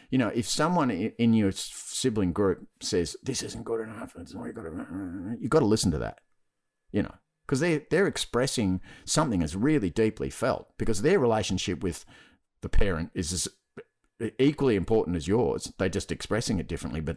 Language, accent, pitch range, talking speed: English, Australian, 75-105 Hz, 170 wpm